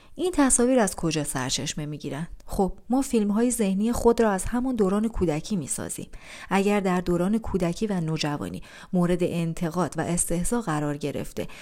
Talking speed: 160 wpm